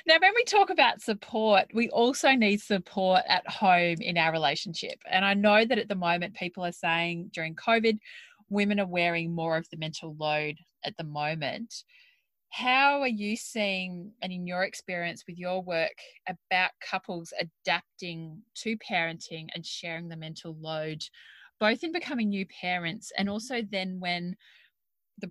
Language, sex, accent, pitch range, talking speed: English, female, Australian, 170-215 Hz, 165 wpm